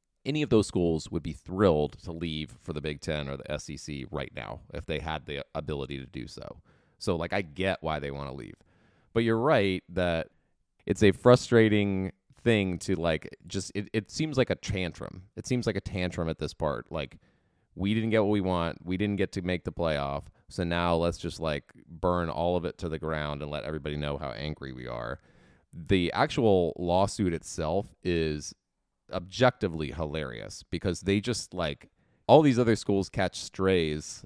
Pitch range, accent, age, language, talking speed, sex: 80-100 Hz, American, 30-49, English, 195 wpm, male